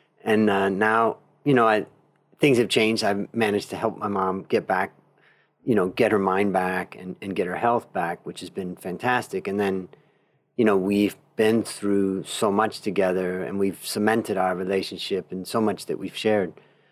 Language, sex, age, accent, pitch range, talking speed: English, male, 40-59, American, 95-115 Hz, 190 wpm